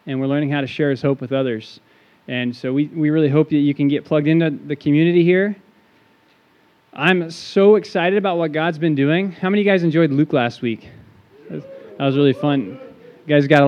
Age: 20-39